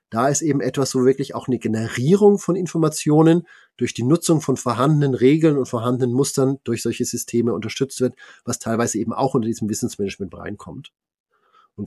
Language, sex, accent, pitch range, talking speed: German, male, German, 110-130 Hz, 170 wpm